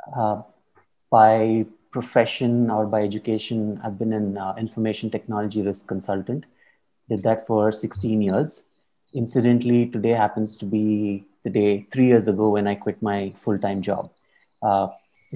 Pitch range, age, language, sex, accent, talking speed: 100-110 Hz, 30-49, English, male, Indian, 140 wpm